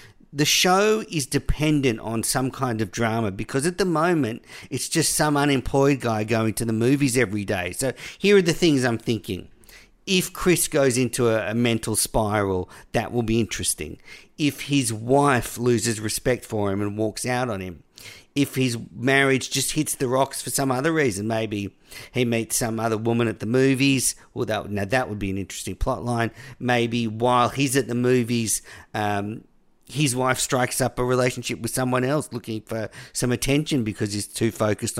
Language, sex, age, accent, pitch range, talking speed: English, male, 50-69, Australian, 110-140 Hz, 185 wpm